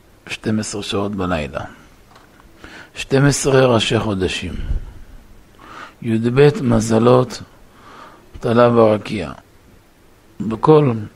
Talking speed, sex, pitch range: 60 wpm, male, 105-125 Hz